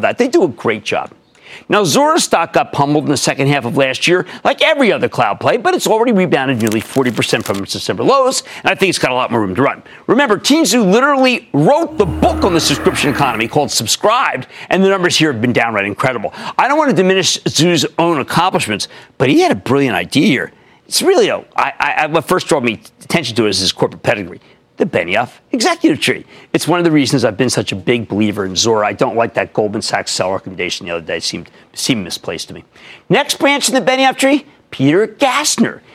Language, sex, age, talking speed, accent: English, male, 40-59, 230 wpm, American